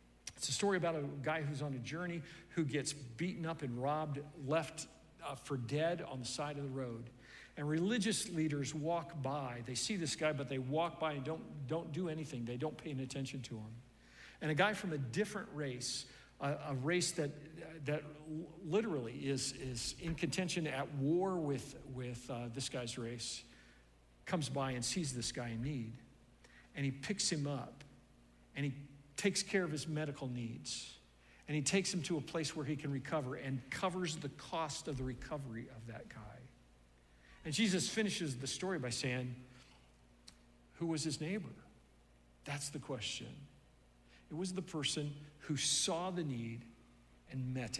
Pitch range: 120-160 Hz